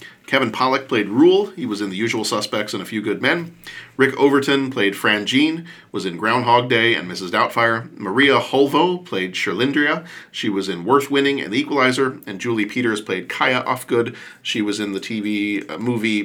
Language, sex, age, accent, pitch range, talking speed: English, male, 40-59, American, 105-140 Hz, 190 wpm